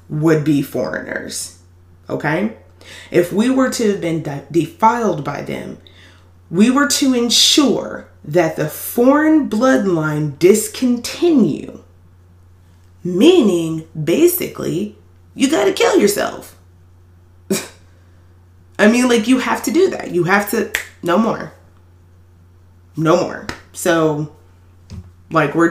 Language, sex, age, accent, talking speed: English, female, 20-39, American, 105 wpm